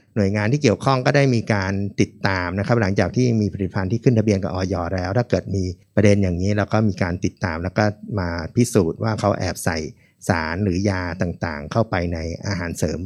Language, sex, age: Thai, male, 60-79